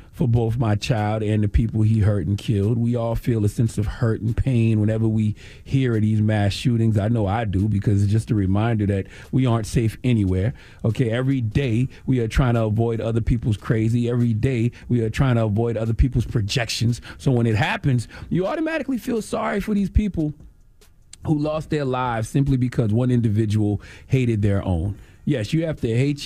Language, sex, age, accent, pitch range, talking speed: English, male, 40-59, American, 105-125 Hz, 200 wpm